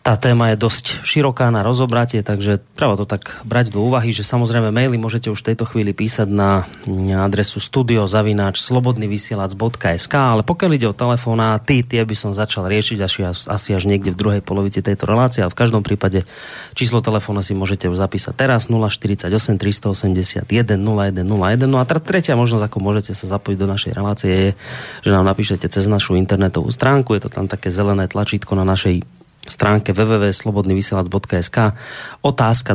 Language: Slovak